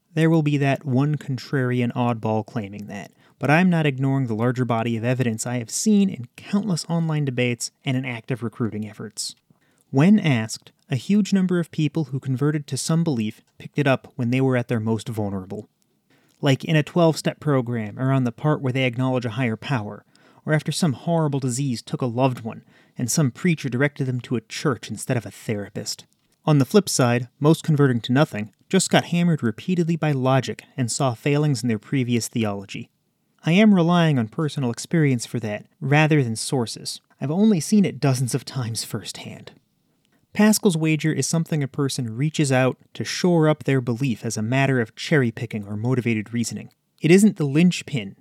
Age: 30-49